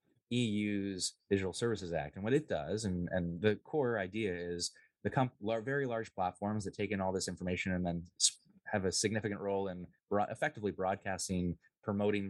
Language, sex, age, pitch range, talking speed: English, male, 20-39, 90-105 Hz, 185 wpm